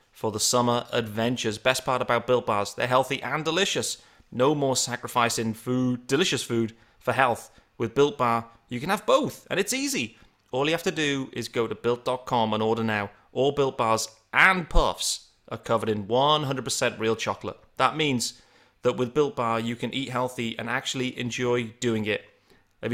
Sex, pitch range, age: male, 115-135 Hz, 30-49